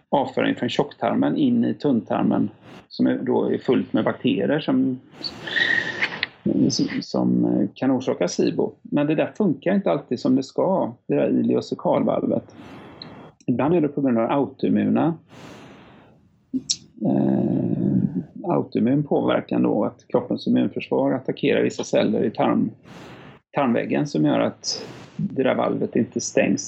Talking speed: 130 wpm